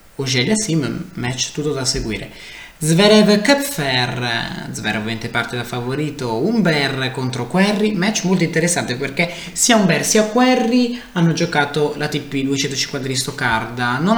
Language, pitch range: Italian, 130-180 Hz